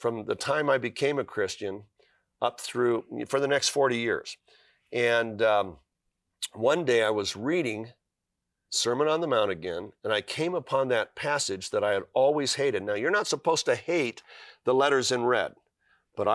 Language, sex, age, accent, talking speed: English, male, 50-69, American, 175 wpm